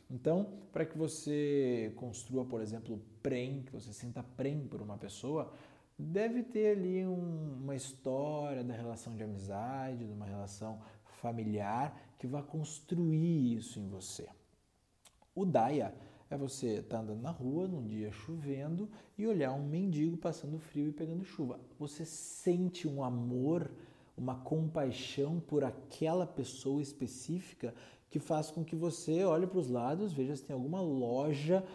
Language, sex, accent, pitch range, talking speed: Portuguese, male, Brazilian, 125-170 Hz, 150 wpm